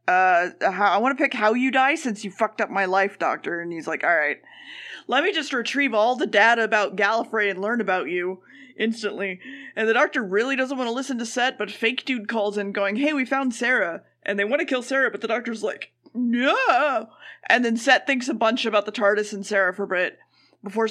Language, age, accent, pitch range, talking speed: English, 20-39, American, 205-260 Hz, 225 wpm